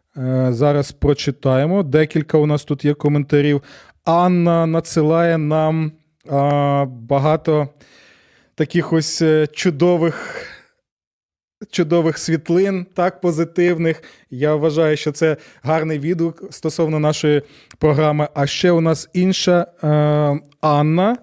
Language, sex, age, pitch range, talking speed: Ukrainian, male, 20-39, 145-175 Hz, 100 wpm